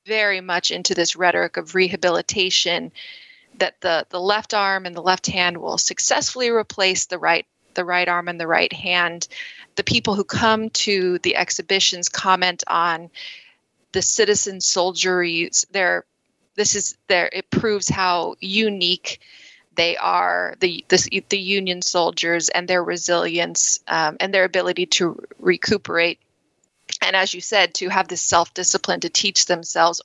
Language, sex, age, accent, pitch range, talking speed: English, female, 20-39, American, 175-205 Hz, 150 wpm